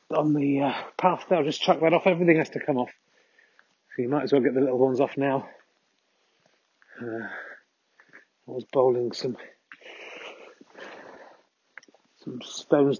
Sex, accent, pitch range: male, British, 130-165 Hz